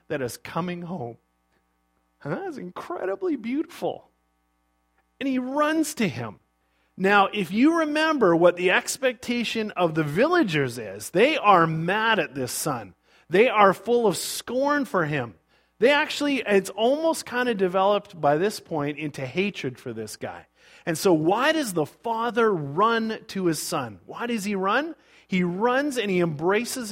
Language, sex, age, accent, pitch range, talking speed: English, male, 40-59, American, 130-215 Hz, 160 wpm